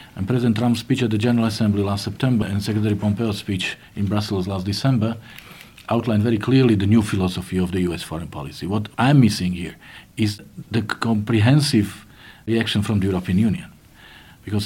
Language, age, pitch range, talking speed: English, 50-69, 100-120 Hz, 170 wpm